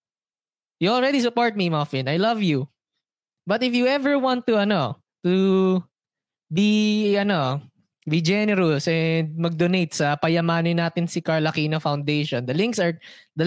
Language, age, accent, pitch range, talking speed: Filipino, 20-39, native, 140-180 Hz, 145 wpm